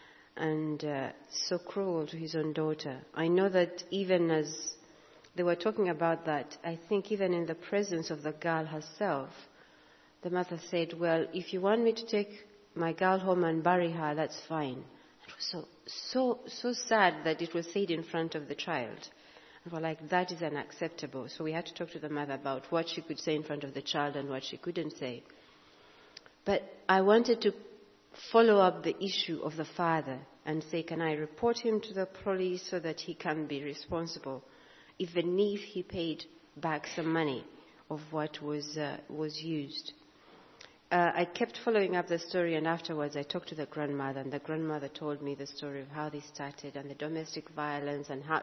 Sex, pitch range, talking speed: female, 150-180 Hz, 200 wpm